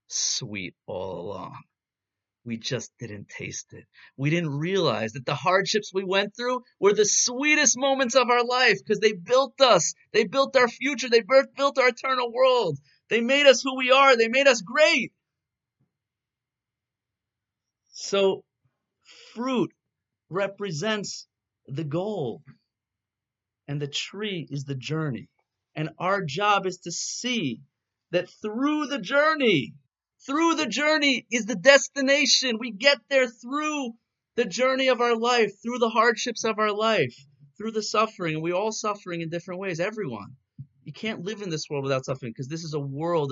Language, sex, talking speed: English, male, 155 wpm